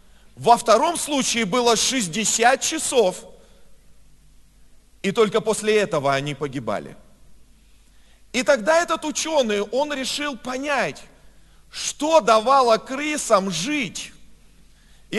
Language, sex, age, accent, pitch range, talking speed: Russian, male, 40-59, native, 215-280 Hz, 90 wpm